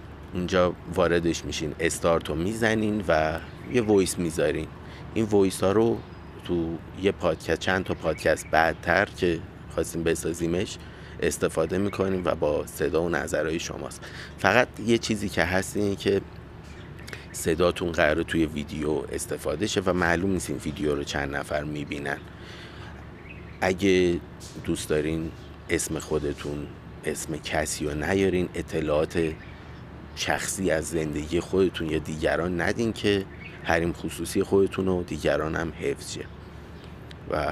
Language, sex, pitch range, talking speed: Persian, male, 80-95 Hz, 120 wpm